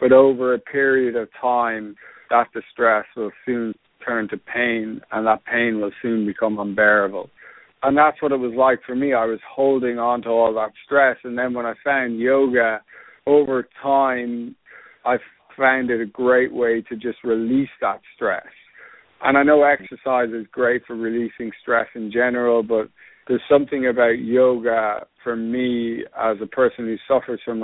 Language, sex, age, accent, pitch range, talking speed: English, male, 50-69, American, 110-125 Hz, 170 wpm